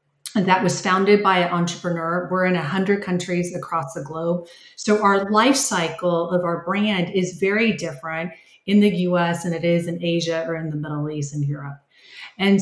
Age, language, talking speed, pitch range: 30-49, English, 185 wpm, 170-205 Hz